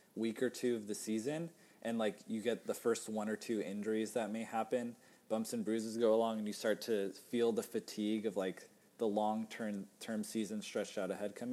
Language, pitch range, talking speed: English, 105-125 Hz, 215 wpm